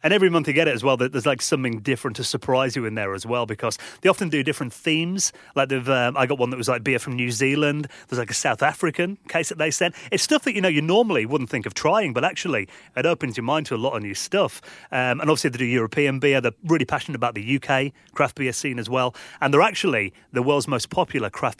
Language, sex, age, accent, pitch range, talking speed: English, male, 30-49, British, 120-150 Hz, 265 wpm